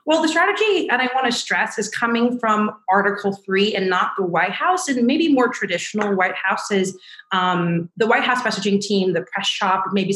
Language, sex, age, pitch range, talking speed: English, female, 30-49, 175-235 Hz, 200 wpm